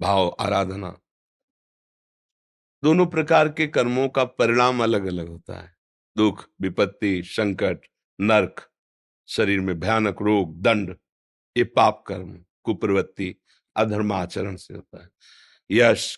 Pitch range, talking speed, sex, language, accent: 100-155 Hz, 110 wpm, male, Hindi, native